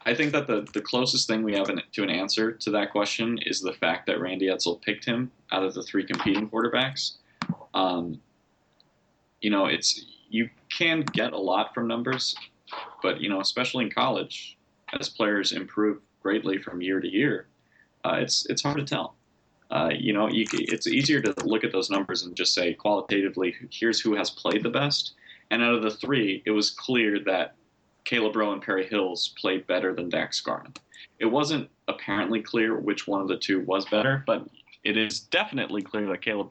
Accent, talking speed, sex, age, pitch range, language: American, 195 wpm, male, 30-49, 95-115 Hz, English